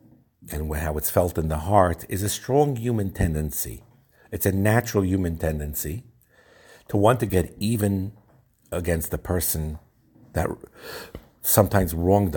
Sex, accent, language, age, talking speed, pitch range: male, American, English, 50-69, 135 wpm, 90-110 Hz